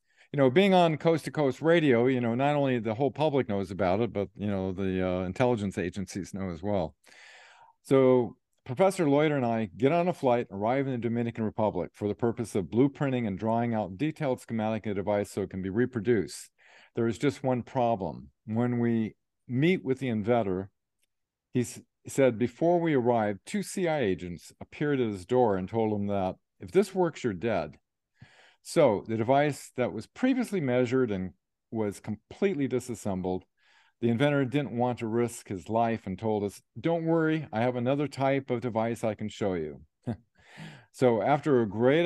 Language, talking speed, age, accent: English, 185 wpm, 50-69, American